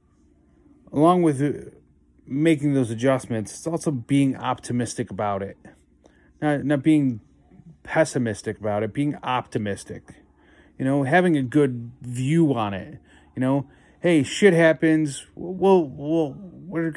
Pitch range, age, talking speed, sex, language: 110-150 Hz, 30-49, 115 wpm, male, English